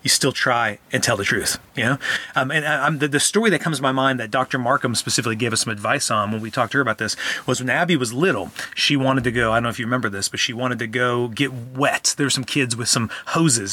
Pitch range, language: 125-175 Hz, English